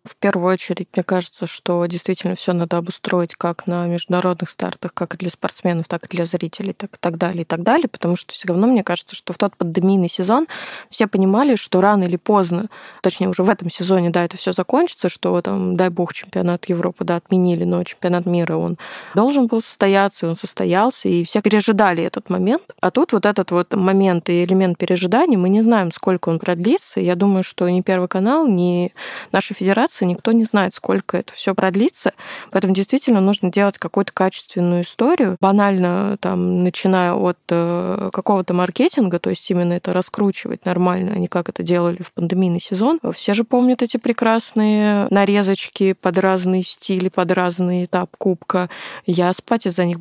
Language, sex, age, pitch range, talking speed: Russian, female, 20-39, 180-205 Hz, 185 wpm